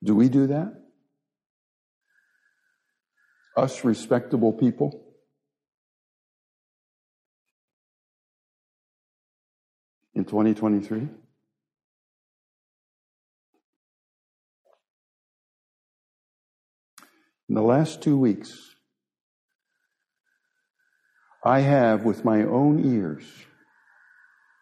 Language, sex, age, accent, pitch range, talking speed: English, male, 60-79, American, 105-155 Hz, 50 wpm